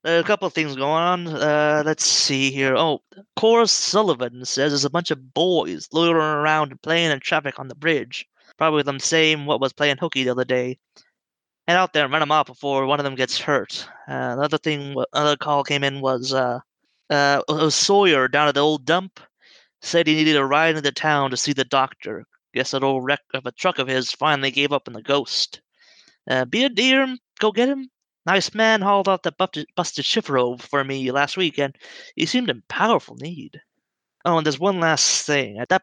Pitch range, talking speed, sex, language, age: 140-185 Hz, 210 wpm, male, English, 20-39